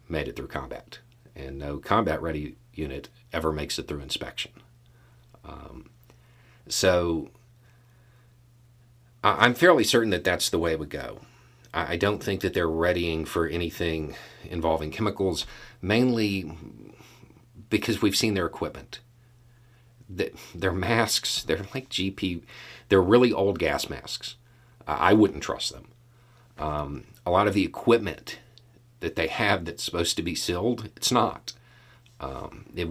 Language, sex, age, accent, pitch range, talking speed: English, male, 40-59, American, 85-120 Hz, 135 wpm